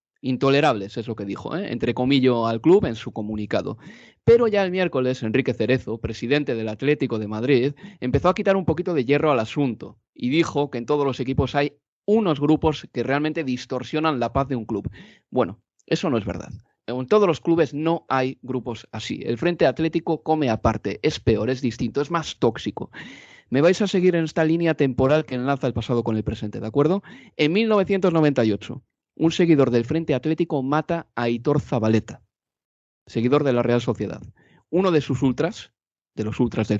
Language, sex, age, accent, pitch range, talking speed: Spanish, male, 30-49, Spanish, 120-165 Hz, 190 wpm